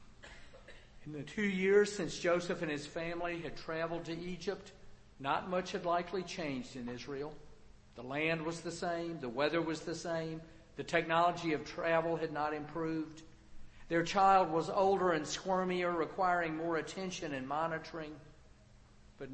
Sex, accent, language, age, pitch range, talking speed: male, American, English, 50-69, 140-170 Hz, 150 wpm